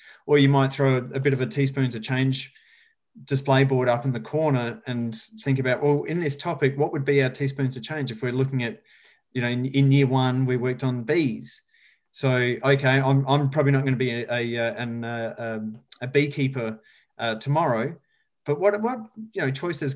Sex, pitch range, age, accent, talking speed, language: male, 120-140 Hz, 30-49, Australian, 205 wpm, English